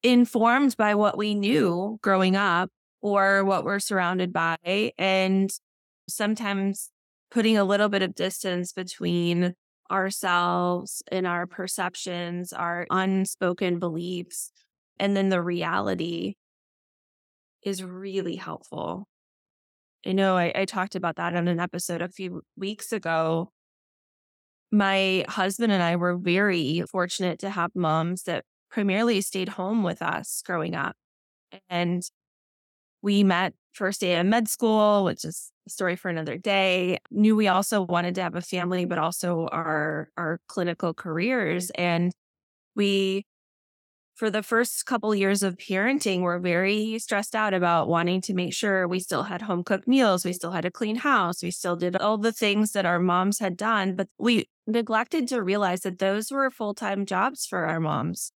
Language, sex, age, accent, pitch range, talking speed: English, female, 20-39, American, 175-205 Hz, 155 wpm